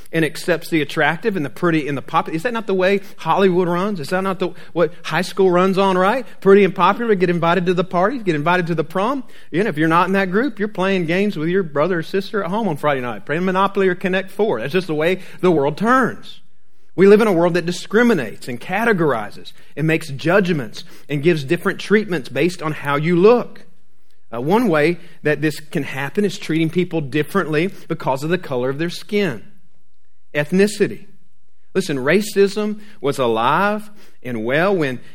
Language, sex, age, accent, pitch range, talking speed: English, male, 40-59, American, 150-200 Hz, 200 wpm